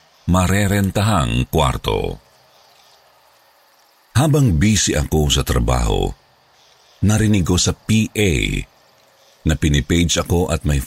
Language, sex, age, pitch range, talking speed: Filipino, male, 50-69, 75-100 Hz, 90 wpm